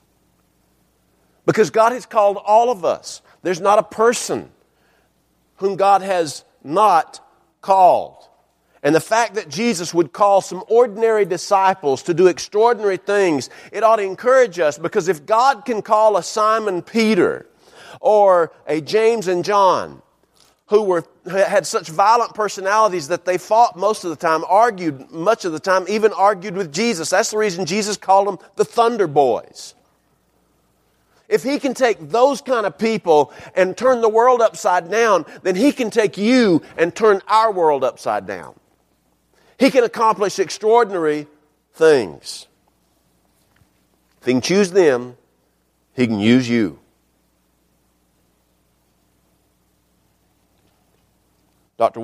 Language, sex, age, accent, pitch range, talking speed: English, male, 50-69, American, 135-220 Hz, 140 wpm